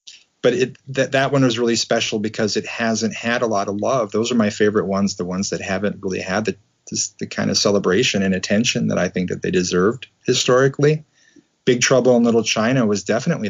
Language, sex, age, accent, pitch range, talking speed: English, male, 30-49, American, 110-140 Hz, 215 wpm